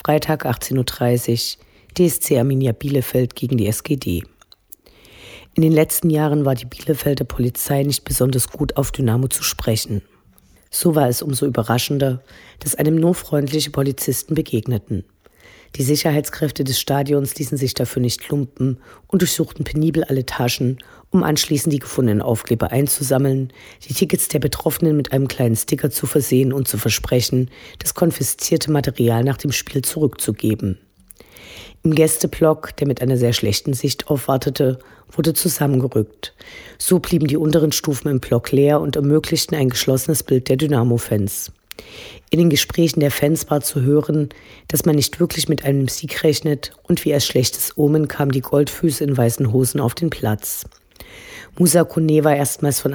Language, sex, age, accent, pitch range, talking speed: German, female, 50-69, German, 125-150 Hz, 155 wpm